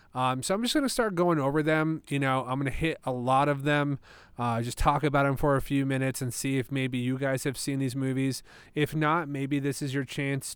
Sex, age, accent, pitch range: male, 30-49, American, 130-155 Hz